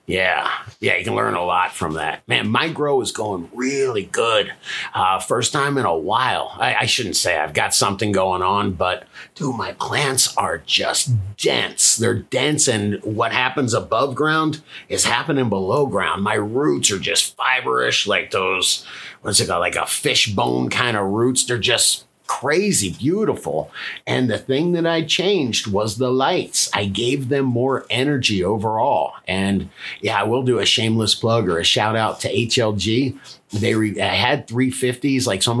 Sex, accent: male, American